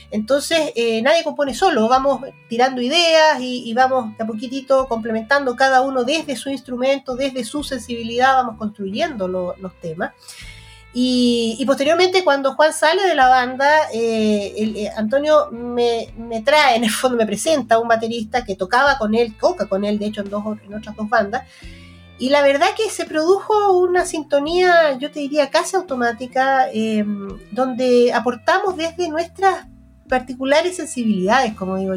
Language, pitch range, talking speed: Spanish, 210-285 Hz, 165 wpm